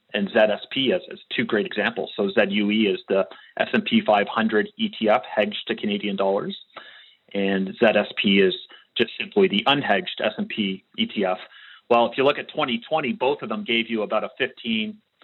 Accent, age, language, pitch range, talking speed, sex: American, 30-49, English, 105-140 Hz, 160 wpm, male